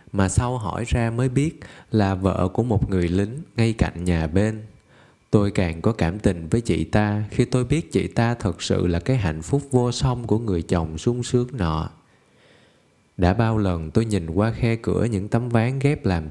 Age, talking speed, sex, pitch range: 20-39, 205 wpm, male, 90-120 Hz